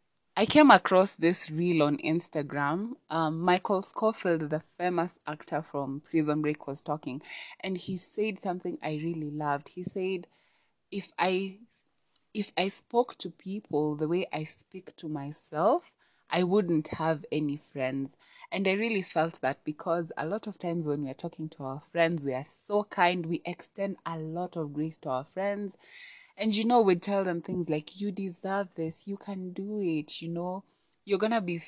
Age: 20-39